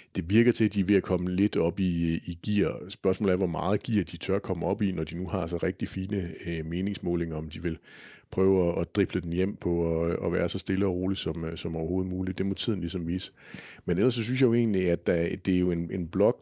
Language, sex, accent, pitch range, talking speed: Danish, male, native, 85-105 Hz, 260 wpm